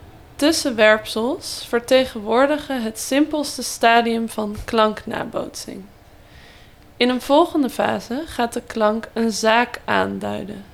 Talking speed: 95 wpm